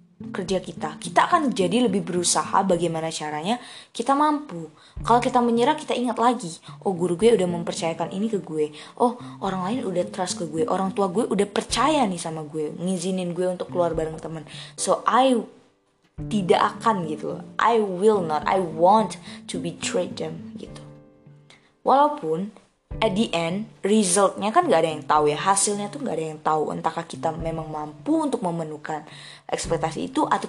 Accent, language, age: native, Indonesian, 20-39